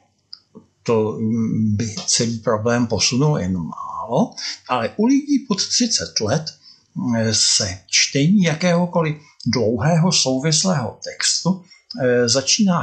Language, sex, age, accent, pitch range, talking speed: Czech, male, 60-79, native, 115-175 Hz, 95 wpm